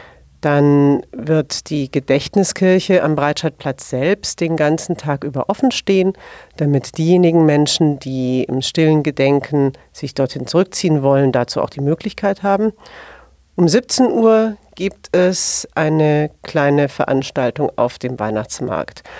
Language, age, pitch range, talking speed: German, 40-59, 130-165 Hz, 125 wpm